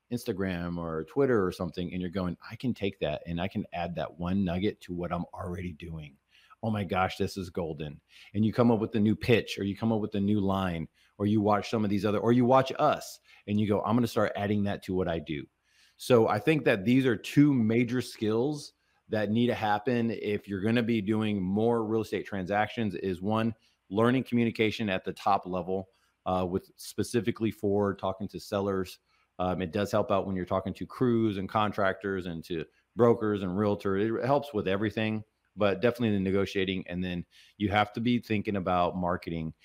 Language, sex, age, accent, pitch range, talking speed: English, male, 30-49, American, 95-115 Hz, 215 wpm